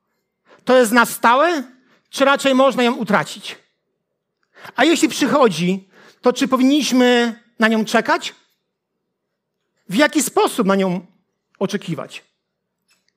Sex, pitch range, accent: male, 220-280 Hz, native